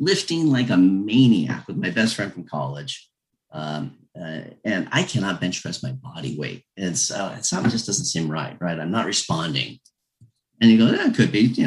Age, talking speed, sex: 40-59, 205 wpm, male